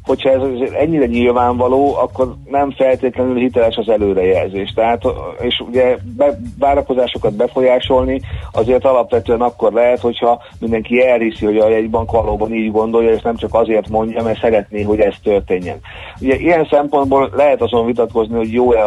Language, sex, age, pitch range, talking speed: Hungarian, male, 40-59, 105-125 Hz, 150 wpm